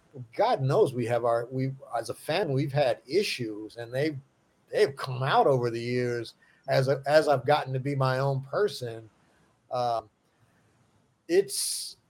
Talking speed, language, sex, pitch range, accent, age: 155 wpm, English, male, 125-155 Hz, American, 50-69